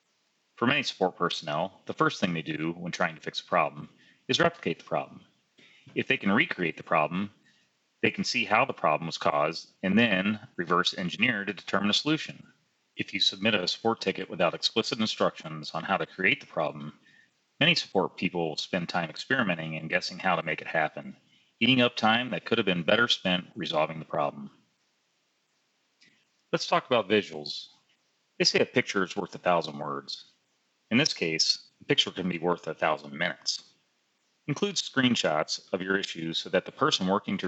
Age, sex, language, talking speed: 30-49, male, English, 185 wpm